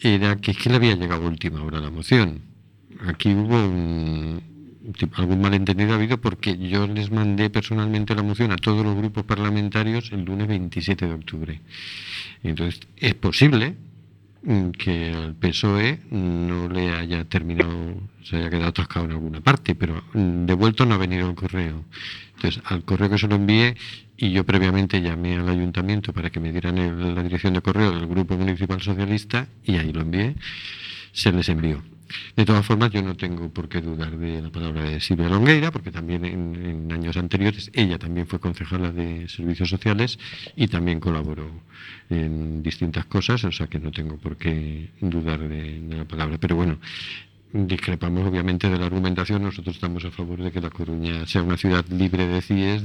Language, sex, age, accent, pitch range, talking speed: Spanish, male, 50-69, Spanish, 85-105 Hz, 180 wpm